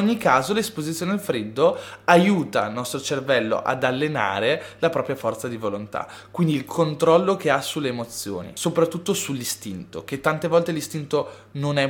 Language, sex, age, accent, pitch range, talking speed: Italian, male, 20-39, native, 120-155 Hz, 155 wpm